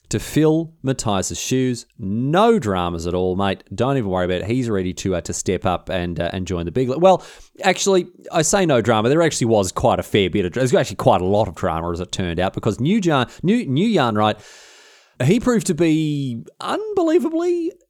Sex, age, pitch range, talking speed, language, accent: male, 30-49, 110-175 Hz, 225 wpm, English, Australian